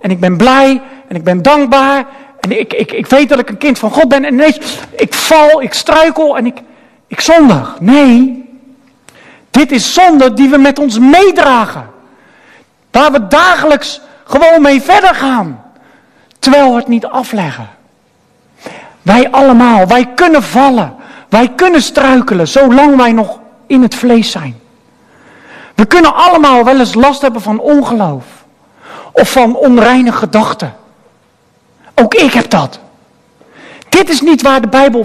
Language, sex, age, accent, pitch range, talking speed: Dutch, male, 50-69, Dutch, 220-290 Hz, 150 wpm